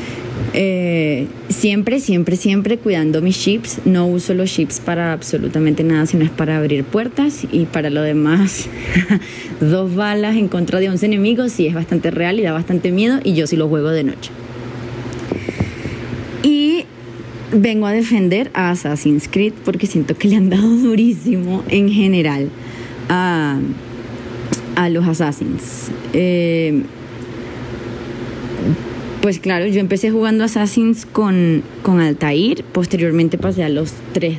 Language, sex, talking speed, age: Spanish, female, 140 wpm, 20-39